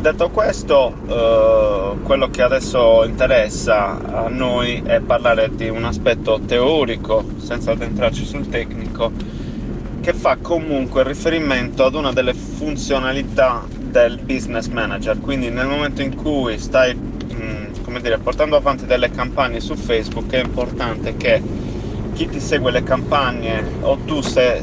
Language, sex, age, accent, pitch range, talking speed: Italian, male, 20-39, native, 115-135 Hz, 135 wpm